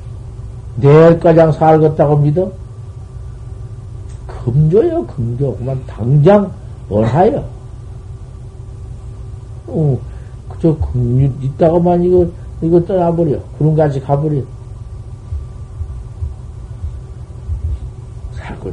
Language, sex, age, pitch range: Korean, male, 50-69, 115-150 Hz